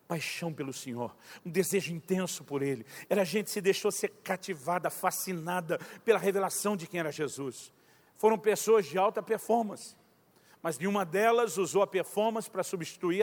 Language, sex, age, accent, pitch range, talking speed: Portuguese, male, 50-69, Brazilian, 165-205 Hz, 160 wpm